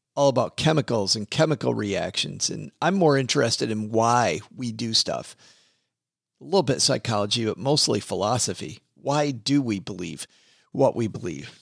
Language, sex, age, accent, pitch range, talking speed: English, male, 40-59, American, 120-150 Hz, 150 wpm